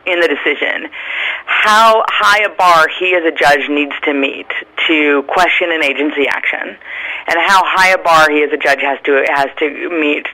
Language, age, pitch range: English, 40-59, 145-195 Hz